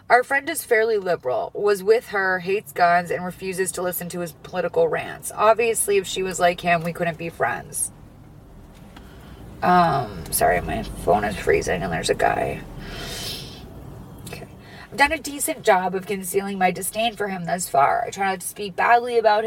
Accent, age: American, 30-49